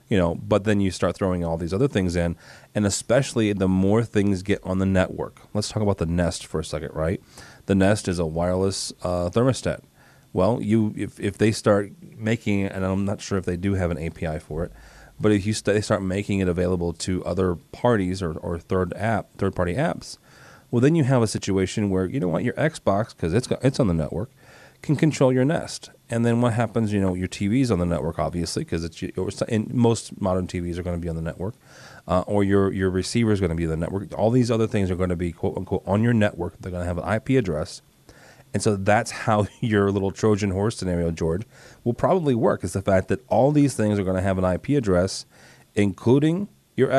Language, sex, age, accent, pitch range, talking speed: English, male, 30-49, American, 90-110 Hz, 235 wpm